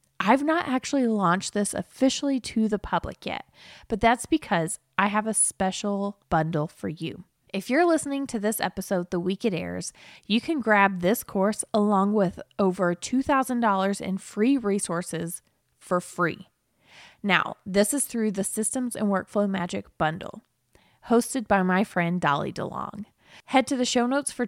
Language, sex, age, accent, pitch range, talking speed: English, female, 20-39, American, 180-245 Hz, 160 wpm